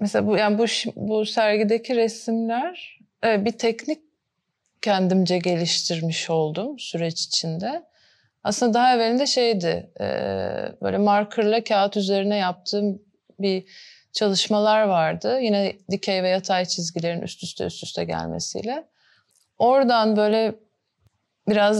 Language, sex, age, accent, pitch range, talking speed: Turkish, female, 30-49, native, 185-225 Hz, 105 wpm